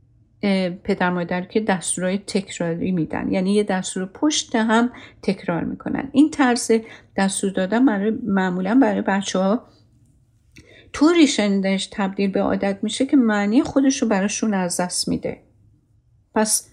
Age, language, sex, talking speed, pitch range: 50-69, Persian, female, 125 wpm, 185-240 Hz